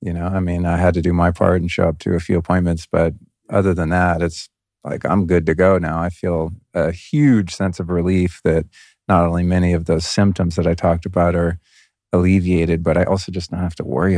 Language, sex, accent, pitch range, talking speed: English, male, American, 85-100 Hz, 235 wpm